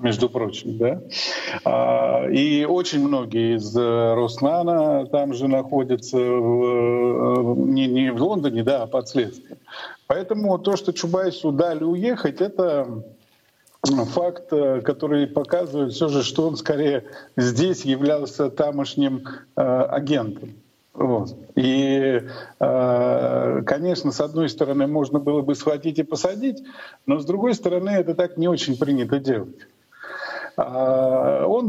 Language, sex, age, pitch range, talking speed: Russian, male, 50-69, 125-175 Hz, 115 wpm